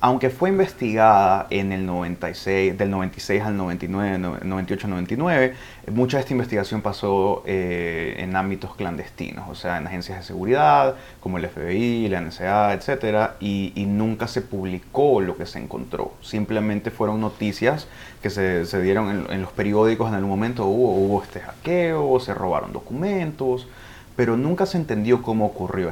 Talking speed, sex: 160 wpm, male